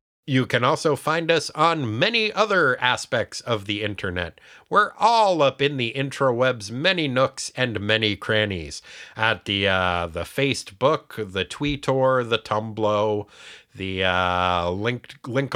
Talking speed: 145 wpm